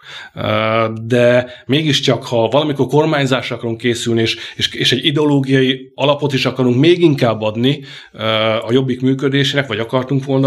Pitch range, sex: 115-135 Hz, male